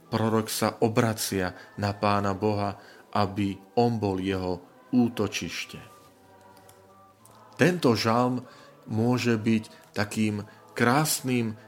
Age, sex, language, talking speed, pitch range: 40-59, male, Slovak, 85 wpm, 105-120 Hz